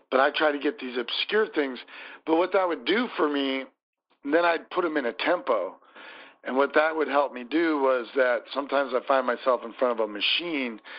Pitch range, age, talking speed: 125-150 Hz, 50-69, 220 wpm